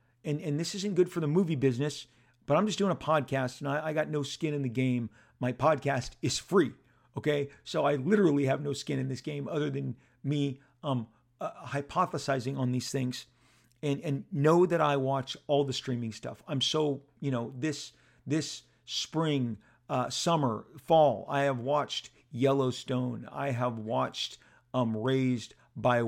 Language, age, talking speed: English, 40-59, 175 wpm